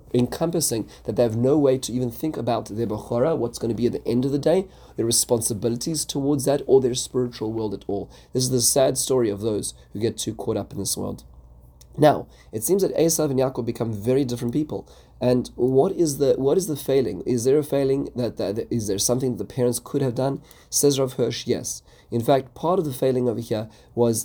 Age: 30-49